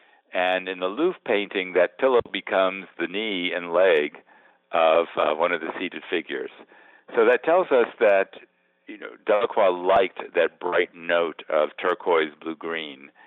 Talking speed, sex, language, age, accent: 160 wpm, male, English, 60-79, American